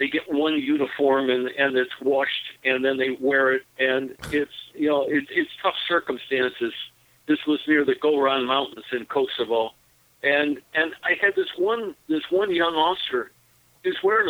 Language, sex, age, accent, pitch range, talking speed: English, male, 50-69, American, 125-155 Hz, 170 wpm